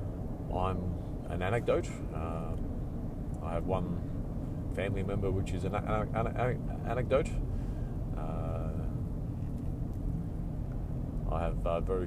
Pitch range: 90-100 Hz